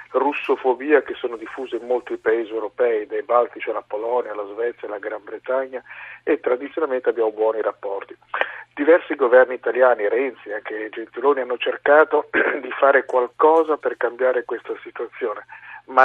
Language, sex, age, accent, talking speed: Italian, male, 50-69, native, 145 wpm